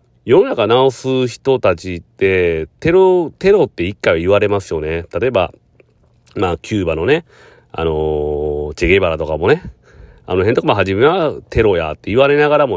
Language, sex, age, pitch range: Japanese, male, 40-59, 85-130 Hz